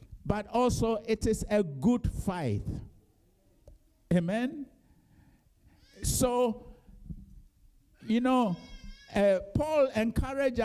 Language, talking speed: English, 80 wpm